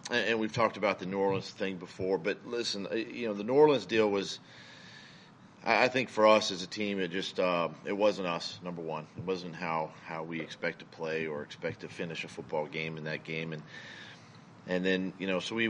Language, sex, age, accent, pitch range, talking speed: English, male, 40-59, American, 85-100 Hz, 220 wpm